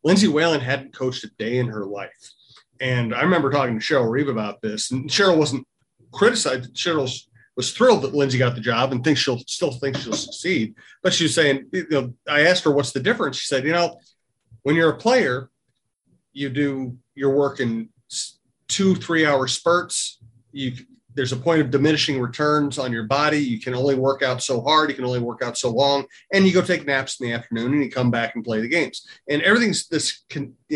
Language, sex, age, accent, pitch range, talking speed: English, male, 40-59, American, 120-145 Hz, 215 wpm